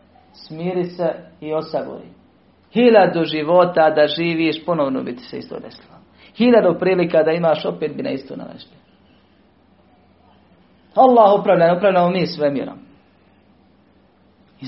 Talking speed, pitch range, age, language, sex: 120 wpm, 140-175 Hz, 40-59, Croatian, male